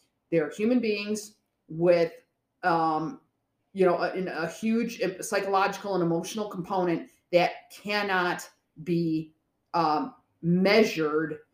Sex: female